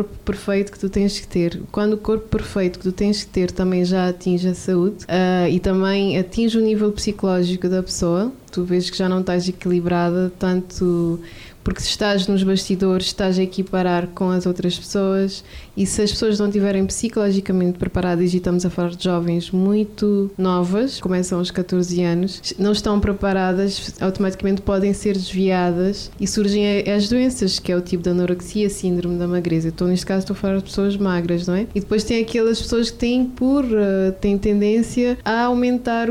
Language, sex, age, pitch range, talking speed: Portuguese, female, 20-39, 185-215 Hz, 185 wpm